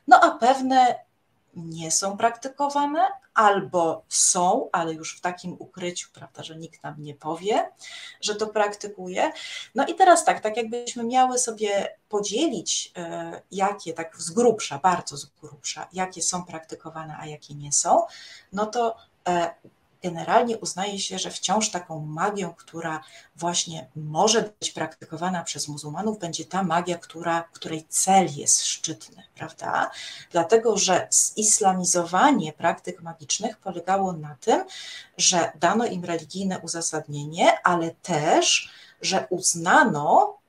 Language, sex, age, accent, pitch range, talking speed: Polish, female, 30-49, native, 165-225 Hz, 130 wpm